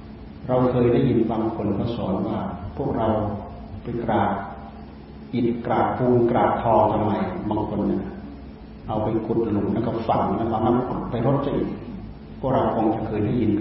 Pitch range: 75-120 Hz